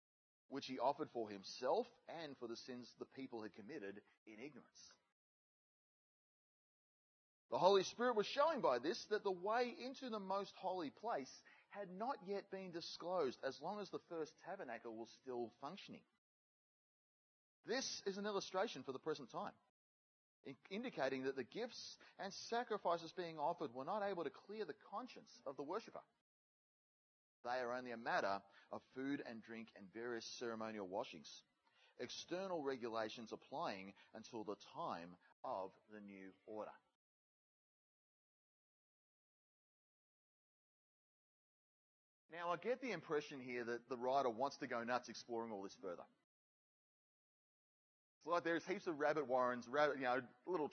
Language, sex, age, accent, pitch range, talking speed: English, male, 30-49, Australian, 120-190 Hz, 140 wpm